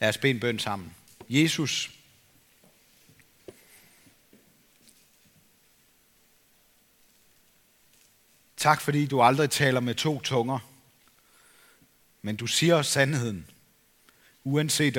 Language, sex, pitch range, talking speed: Danish, male, 115-150 Hz, 75 wpm